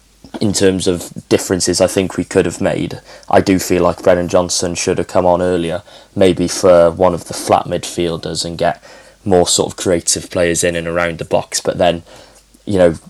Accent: British